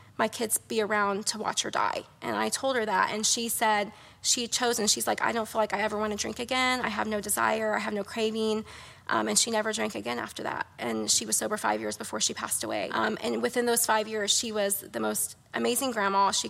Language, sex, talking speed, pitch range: English, female, 250 wpm, 200-225 Hz